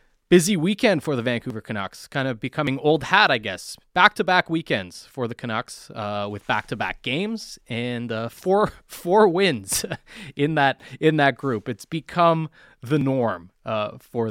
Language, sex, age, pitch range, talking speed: English, male, 20-39, 105-140 Hz, 160 wpm